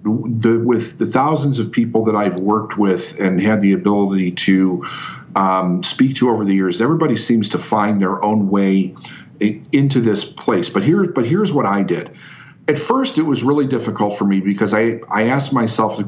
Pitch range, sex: 100-125 Hz, male